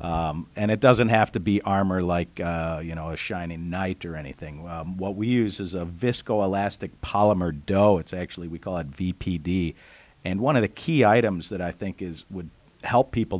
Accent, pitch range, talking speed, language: American, 85-105 Hz, 200 wpm, English